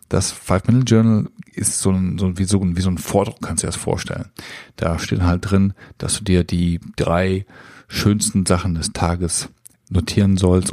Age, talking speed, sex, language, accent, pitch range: 40-59, 195 wpm, male, German, German, 90-110 Hz